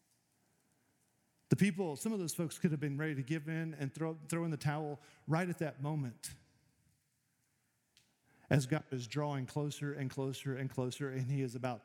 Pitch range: 150-190 Hz